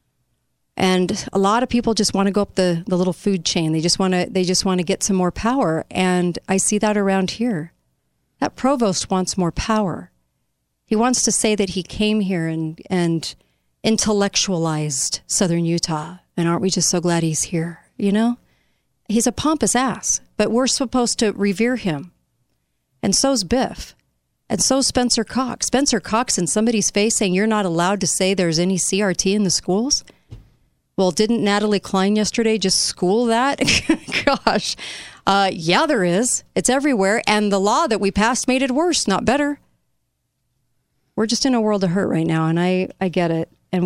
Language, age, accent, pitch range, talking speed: English, 40-59, American, 180-230 Hz, 185 wpm